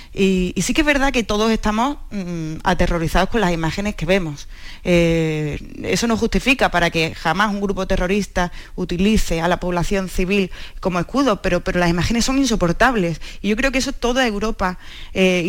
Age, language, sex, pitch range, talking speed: 20-39, Spanish, female, 170-200 Hz, 180 wpm